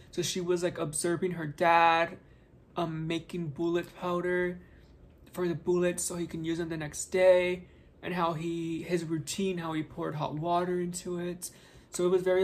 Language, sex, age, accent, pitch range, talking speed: English, male, 20-39, American, 160-180 Hz, 185 wpm